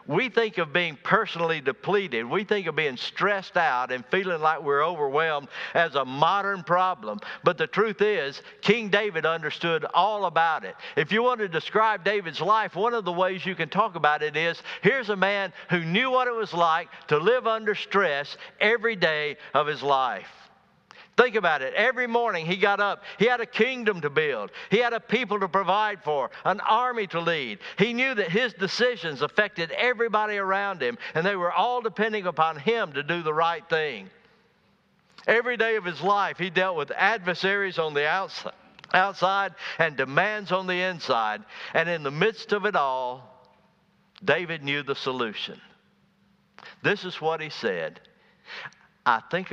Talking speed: 180 wpm